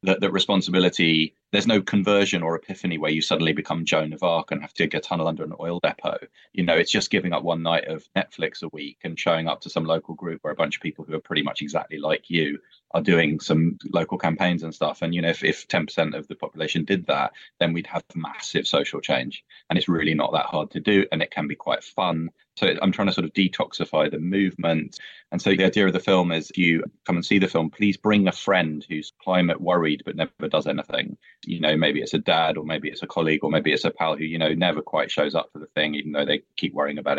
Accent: British